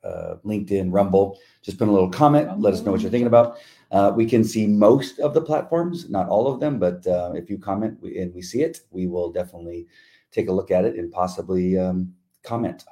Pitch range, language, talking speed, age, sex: 90-115 Hz, English, 225 wpm, 40-59, male